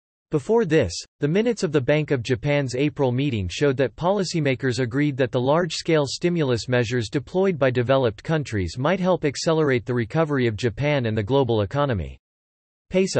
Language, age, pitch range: English, 40-59, 120-160 Hz